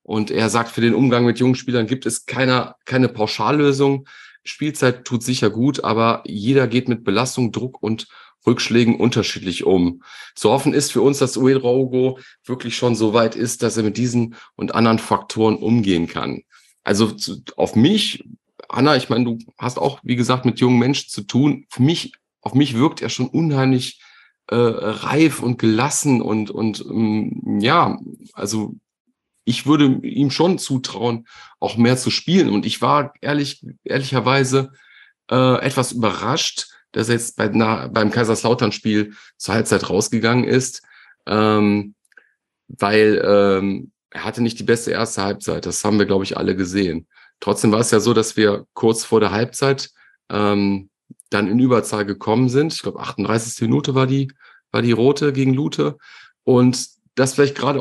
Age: 40-59